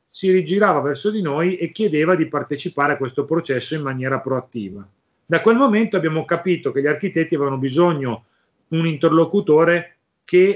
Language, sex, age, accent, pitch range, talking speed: Italian, male, 40-59, native, 140-190 Hz, 160 wpm